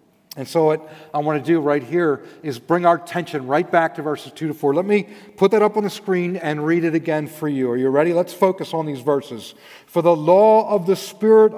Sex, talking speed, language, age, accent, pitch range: male, 250 wpm, English, 40-59, American, 155-200 Hz